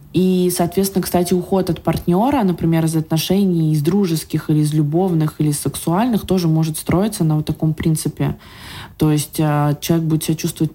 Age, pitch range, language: 20-39, 160-190 Hz, Russian